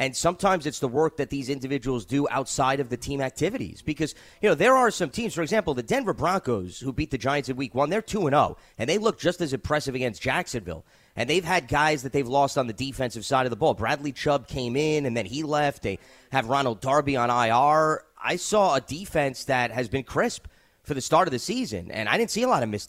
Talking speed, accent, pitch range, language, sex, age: 245 wpm, American, 120-150 Hz, English, male, 30-49